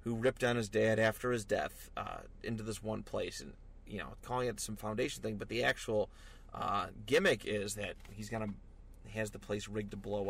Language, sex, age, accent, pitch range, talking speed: English, male, 30-49, American, 100-125 Hz, 215 wpm